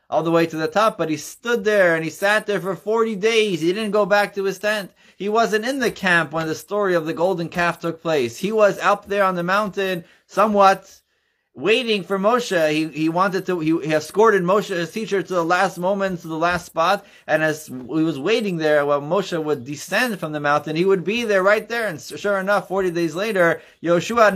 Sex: male